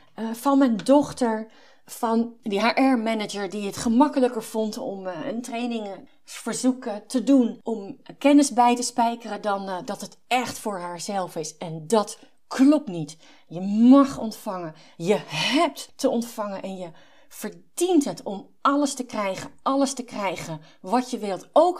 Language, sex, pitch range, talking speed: Dutch, female, 195-260 Hz, 155 wpm